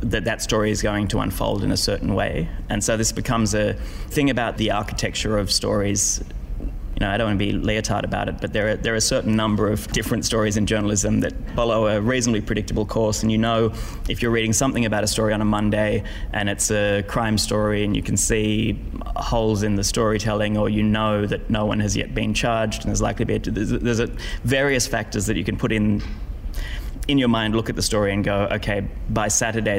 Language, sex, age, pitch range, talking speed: English, male, 20-39, 100-110 Hz, 235 wpm